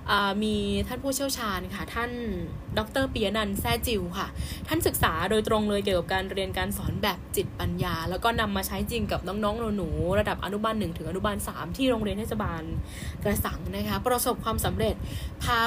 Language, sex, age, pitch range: Thai, female, 10-29, 195-240 Hz